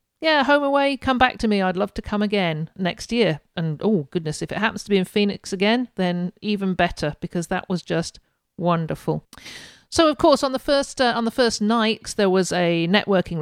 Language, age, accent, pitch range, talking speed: English, 50-69, British, 170-205 Hz, 215 wpm